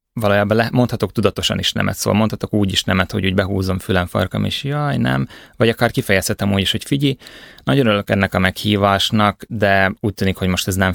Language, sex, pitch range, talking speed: Hungarian, male, 90-110 Hz, 210 wpm